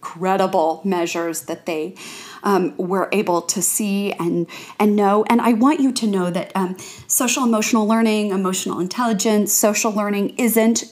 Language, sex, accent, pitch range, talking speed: English, female, American, 190-245 Hz, 155 wpm